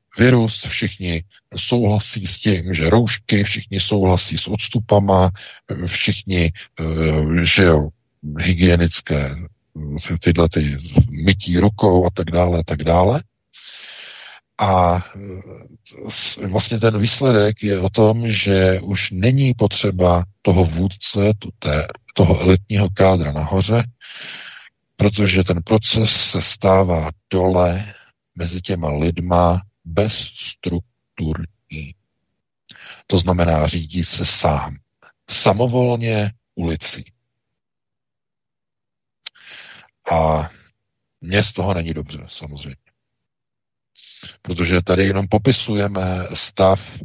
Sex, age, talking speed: male, 50-69, 90 wpm